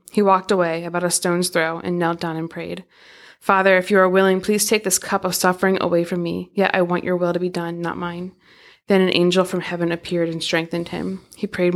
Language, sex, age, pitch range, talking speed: English, female, 20-39, 175-195 Hz, 240 wpm